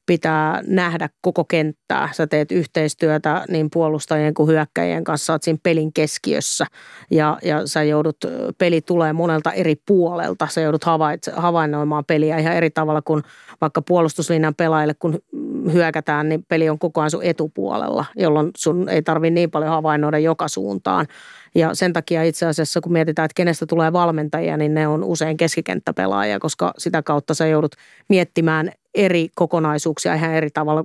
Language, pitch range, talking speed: Finnish, 155-170 Hz, 160 wpm